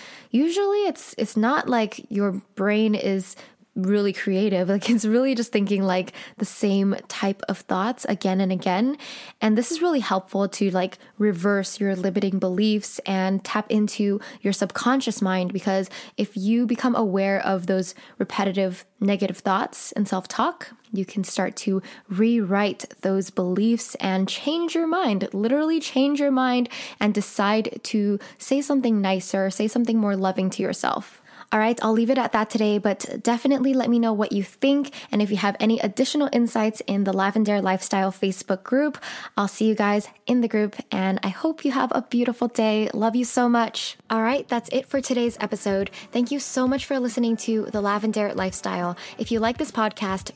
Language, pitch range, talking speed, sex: English, 195-245 Hz, 180 wpm, female